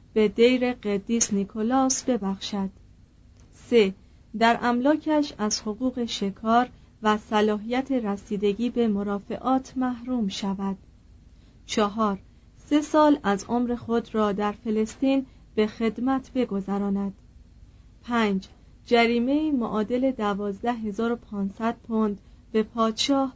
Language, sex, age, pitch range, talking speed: Persian, female, 40-59, 200-245 Hz, 95 wpm